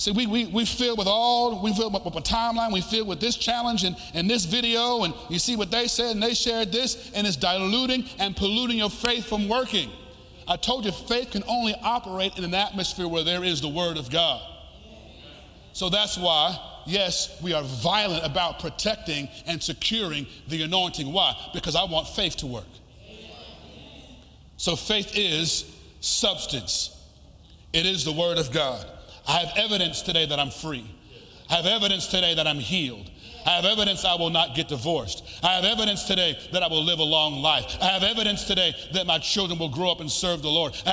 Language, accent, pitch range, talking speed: English, American, 135-205 Hz, 200 wpm